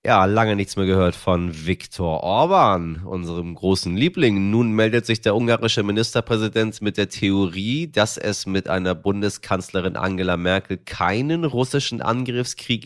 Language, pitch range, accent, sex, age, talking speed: German, 95-125 Hz, German, male, 30-49, 140 wpm